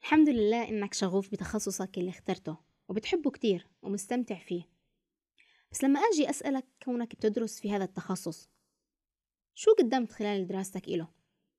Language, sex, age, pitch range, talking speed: Arabic, female, 20-39, 185-265 Hz, 130 wpm